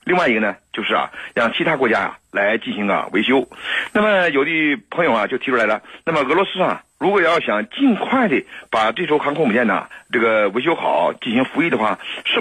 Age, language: 50-69, Chinese